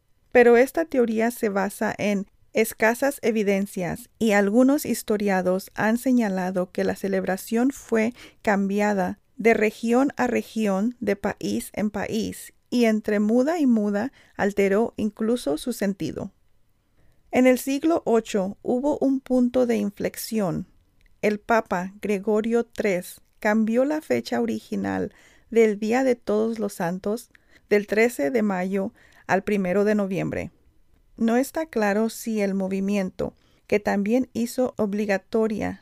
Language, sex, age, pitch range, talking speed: Spanish, female, 40-59, 200-240 Hz, 125 wpm